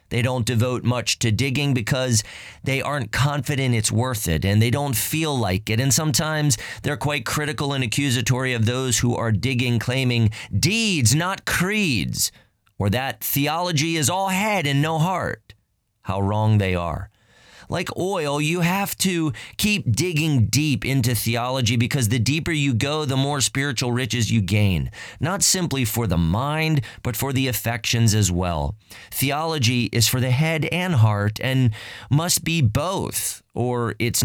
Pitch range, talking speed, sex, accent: 110-145 Hz, 165 wpm, male, American